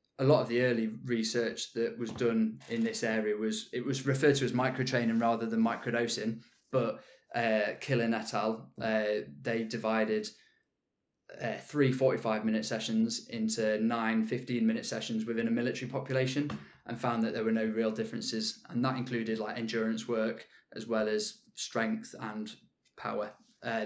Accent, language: British, English